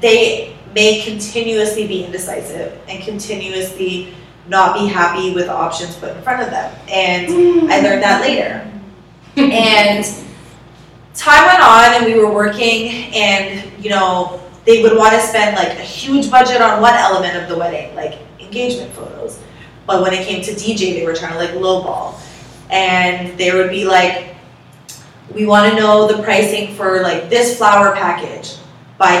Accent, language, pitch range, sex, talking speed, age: American, English, 180-220 Hz, female, 165 wpm, 20-39